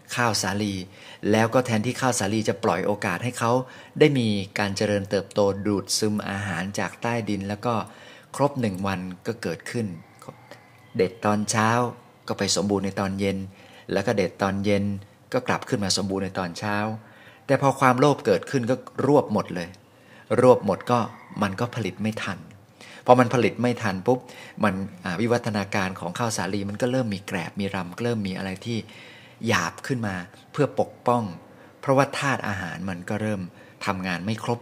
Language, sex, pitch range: Thai, male, 100-120 Hz